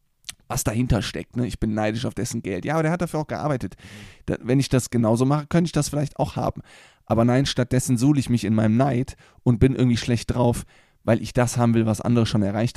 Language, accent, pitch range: German, German, 110-135 Hz